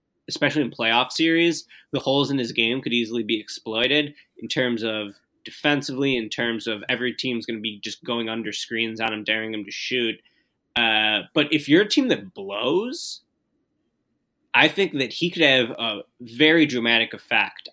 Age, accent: 20-39, American